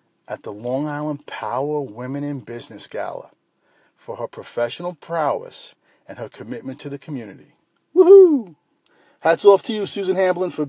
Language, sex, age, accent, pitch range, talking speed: English, male, 40-59, American, 135-185 Hz, 150 wpm